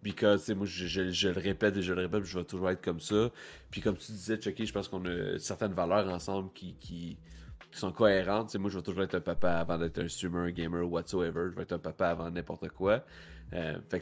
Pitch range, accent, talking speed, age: 90-110 Hz, Canadian, 255 wpm, 30-49